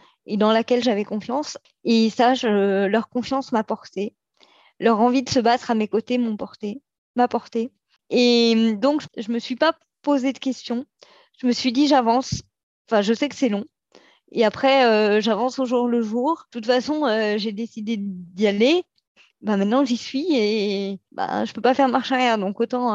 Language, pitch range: French, 215-260 Hz